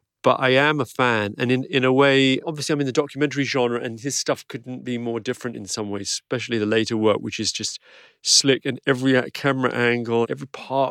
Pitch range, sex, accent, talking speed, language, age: 100-130 Hz, male, British, 220 wpm, English, 40-59